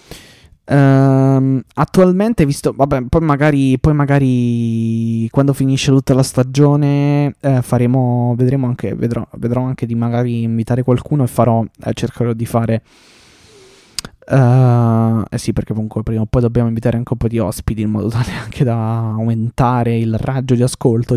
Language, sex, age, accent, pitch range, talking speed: Italian, male, 20-39, native, 115-135 Hz, 155 wpm